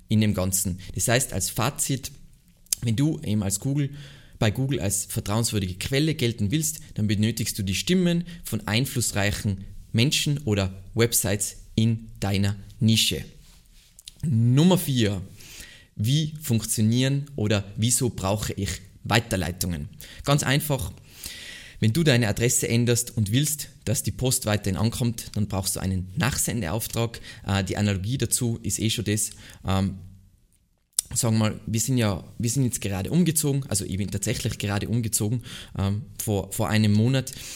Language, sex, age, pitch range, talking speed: German, male, 20-39, 100-130 Hz, 140 wpm